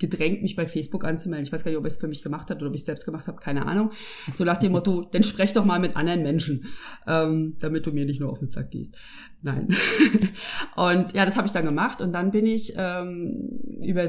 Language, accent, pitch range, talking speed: German, German, 165-215 Hz, 245 wpm